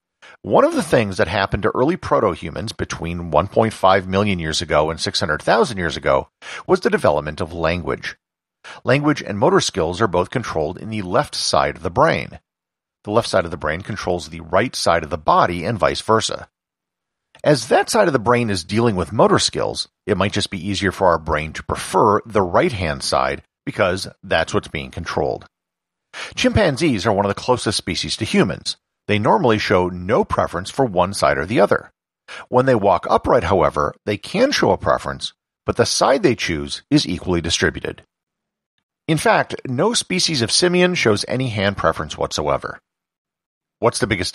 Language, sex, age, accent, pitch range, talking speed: English, male, 50-69, American, 90-115 Hz, 180 wpm